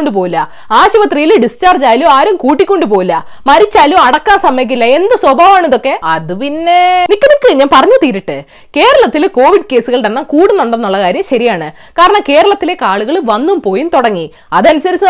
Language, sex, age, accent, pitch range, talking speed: Malayalam, female, 20-39, native, 250-375 Hz, 110 wpm